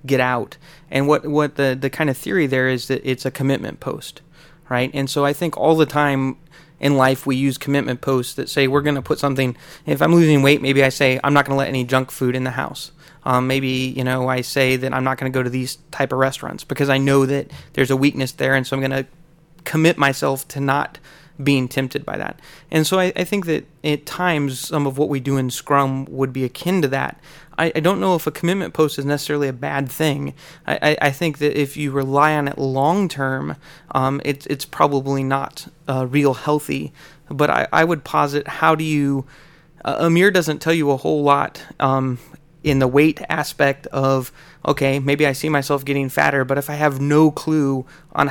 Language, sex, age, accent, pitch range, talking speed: English, male, 30-49, American, 135-155 Hz, 225 wpm